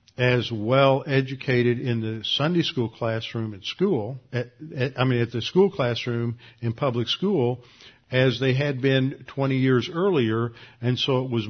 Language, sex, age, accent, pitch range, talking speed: English, male, 50-69, American, 120-145 Hz, 165 wpm